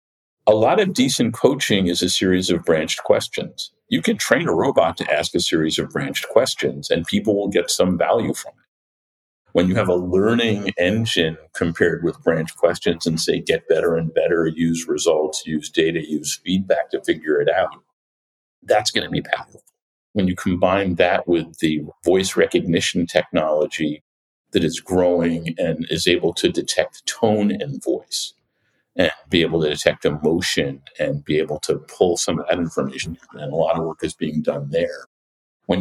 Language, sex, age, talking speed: English, male, 50-69, 180 wpm